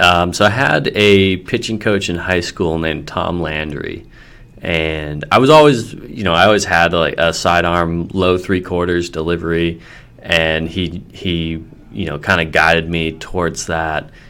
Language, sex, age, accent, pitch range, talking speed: English, male, 20-39, American, 80-105 Hz, 165 wpm